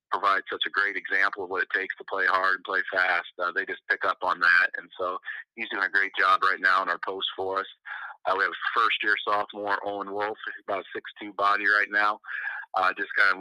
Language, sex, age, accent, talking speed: English, male, 30-49, American, 240 wpm